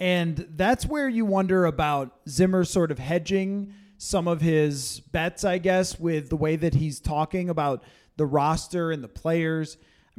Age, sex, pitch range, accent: 30-49, male, 150-185 Hz, American